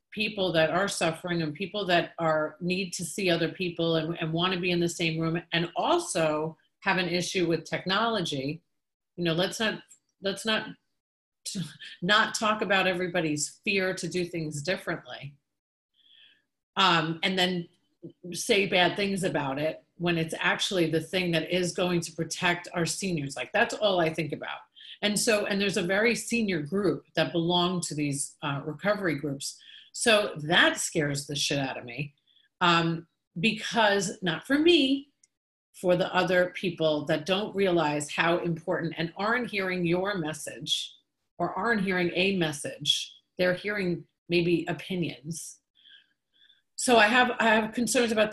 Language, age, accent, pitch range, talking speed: English, 40-59, American, 160-195 Hz, 160 wpm